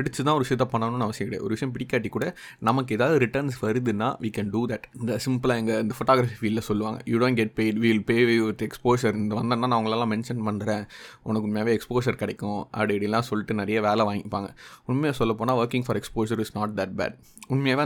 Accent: native